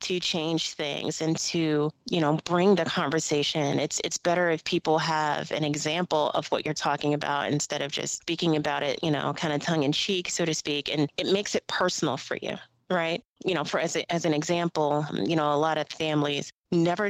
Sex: female